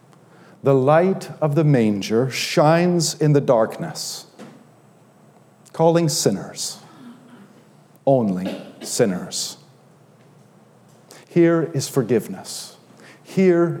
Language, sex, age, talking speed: English, male, 50-69, 75 wpm